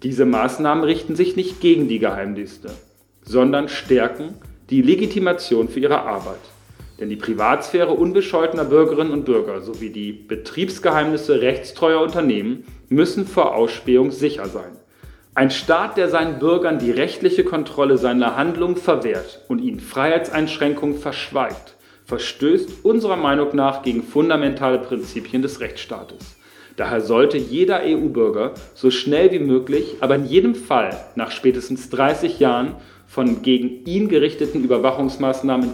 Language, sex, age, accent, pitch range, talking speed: German, male, 40-59, German, 125-175 Hz, 130 wpm